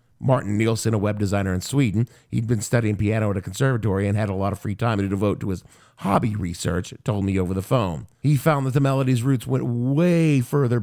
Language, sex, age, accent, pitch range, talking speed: English, male, 50-69, American, 110-140 Hz, 225 wpm